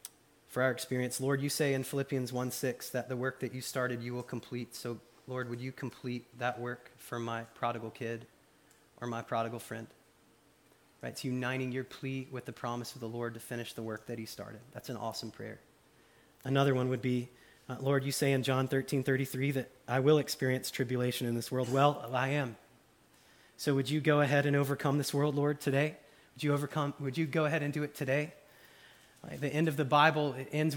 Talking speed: 210 wpm